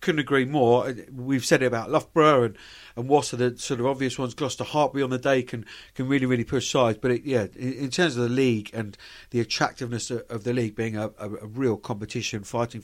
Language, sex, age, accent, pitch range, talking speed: English, male, 50-69, British, 115-150 Hz, 225 wpm